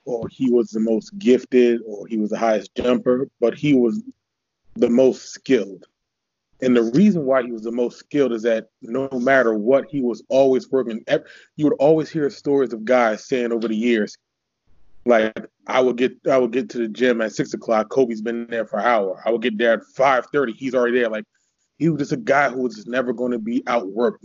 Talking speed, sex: 220 wpm, male